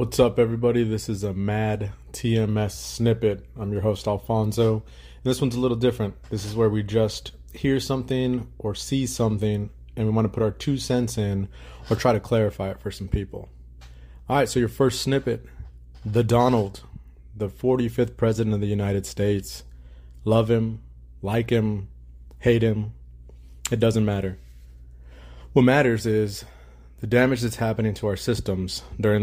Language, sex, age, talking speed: English, male, 20-39, 165 wpm